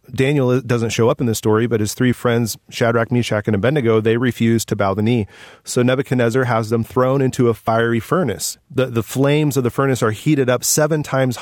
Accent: American